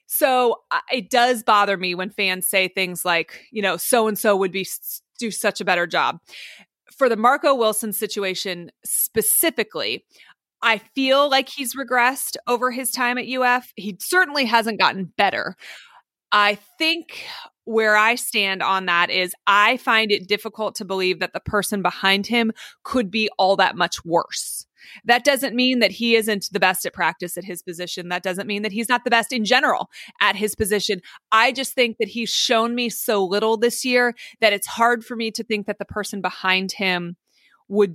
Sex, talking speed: female, 185 wpm